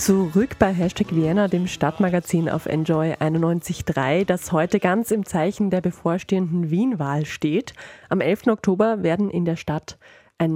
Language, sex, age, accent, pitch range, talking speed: German, female, 30-49, German, 160-195 Hz, 140 wpm